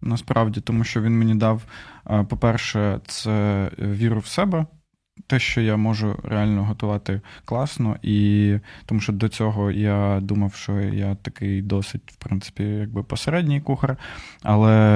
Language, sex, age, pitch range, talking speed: Ukrainian, male, 20-39, 105-120 Hz, 140 wpm